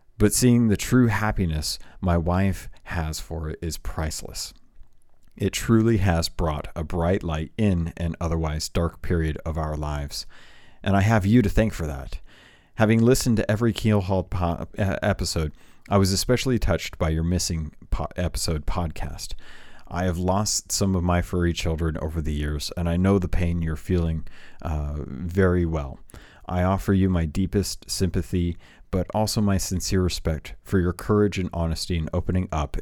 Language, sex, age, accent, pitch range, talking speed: English, male, 40-59, American, 80-95 Hz, 165 wpm